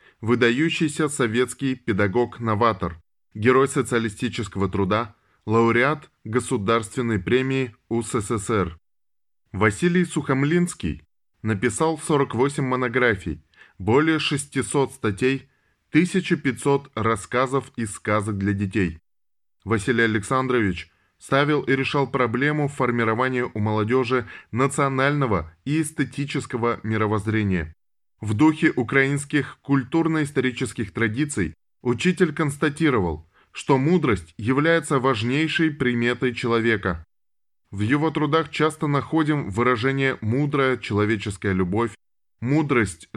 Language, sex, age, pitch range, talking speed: Russian, male, 20-39, 110-140 Hz, 85 wpm